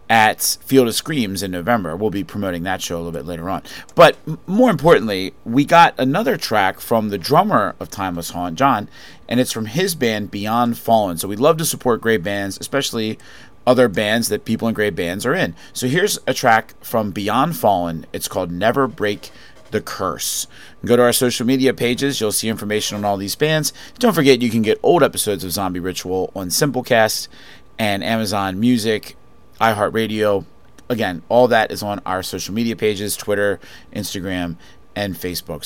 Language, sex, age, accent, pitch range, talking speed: English, male, 30-49, American, 95-125 Hz, 185 wpm